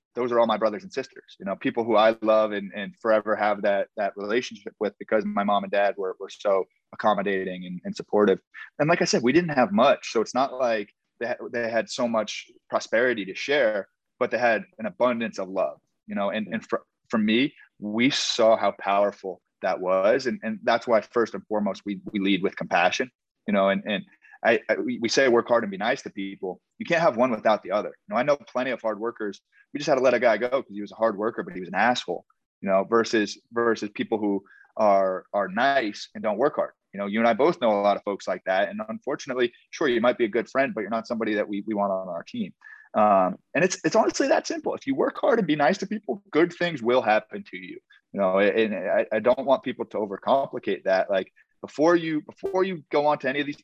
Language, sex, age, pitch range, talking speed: English, male, 30-49, 105-165 Hz, 250 wpm